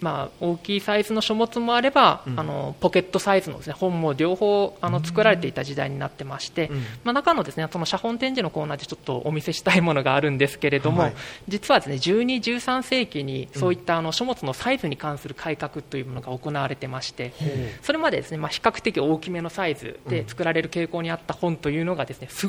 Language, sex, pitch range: Japanese, male, 145-210 Hz